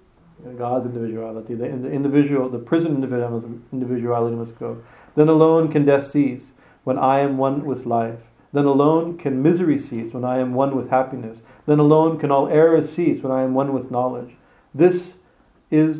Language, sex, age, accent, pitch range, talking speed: English, male, 40-59, American, 125-155 Hz, 170 wpm